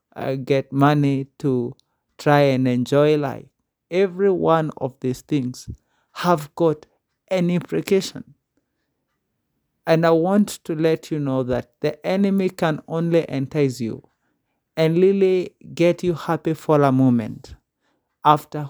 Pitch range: 135-170 Hz